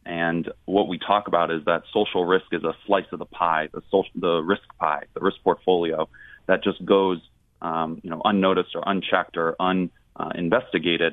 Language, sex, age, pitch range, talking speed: English, male, 30-49, 85-105 Hz, 185 wpm